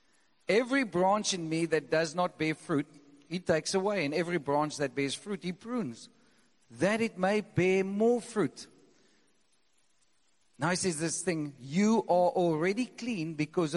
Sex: male